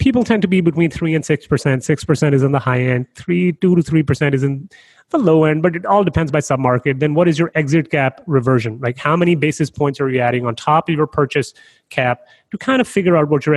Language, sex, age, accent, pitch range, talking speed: English, male, 30-49, Indian, 130-170 Hz, 250 wpm